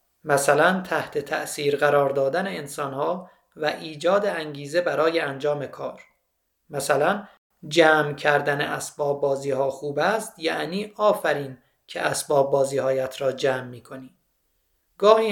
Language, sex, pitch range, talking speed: Persian, male, 140-180 Hz, 120 wpm